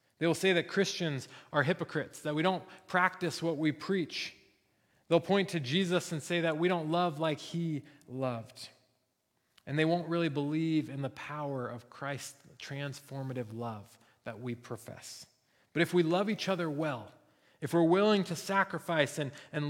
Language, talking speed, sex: English, 170 wpm, male